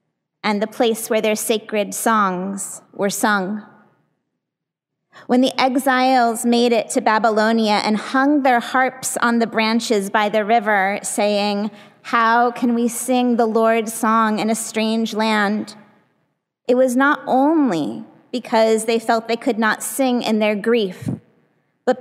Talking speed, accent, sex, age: 145 wpm, American, female, 30-49